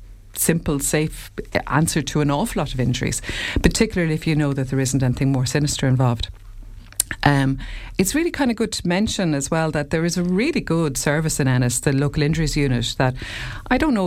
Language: English